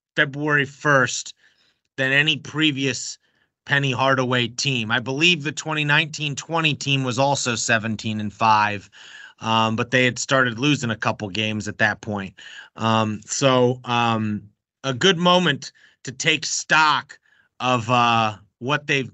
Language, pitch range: English, 125-155 Hz